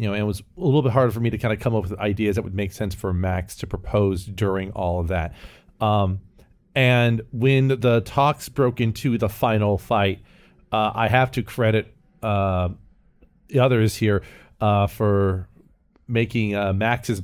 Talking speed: 190 wpm